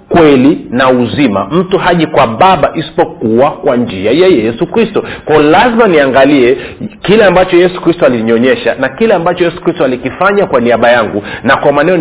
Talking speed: 175 wpm